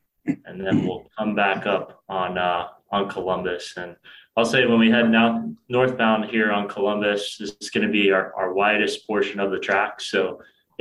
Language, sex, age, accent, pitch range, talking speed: English, male, 20-39, American, 95-115 Hz, 190 wpm